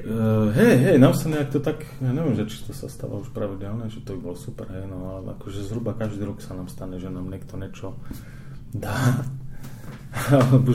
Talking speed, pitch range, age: 195 wpm, 105-130 Hz, 20-39